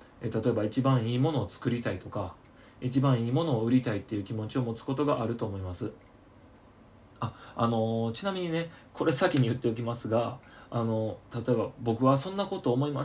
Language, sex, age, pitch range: Japanese, male, 20-39, 110-130 Hz